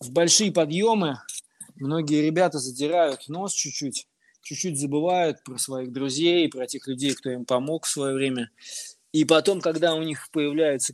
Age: 20-39